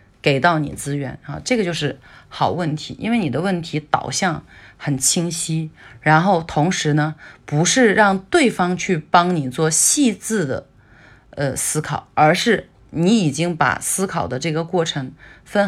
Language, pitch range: Chinese, 135-190 Hz